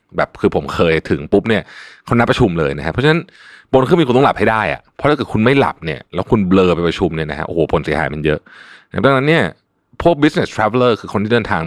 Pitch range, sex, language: 85-135 Hz, male, Thai